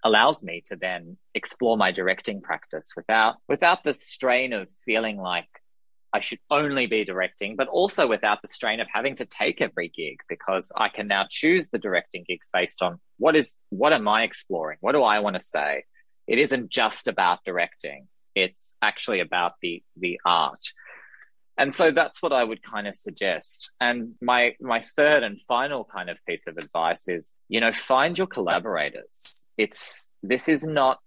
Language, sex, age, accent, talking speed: English, male, 20-39, Australian, 180 wpm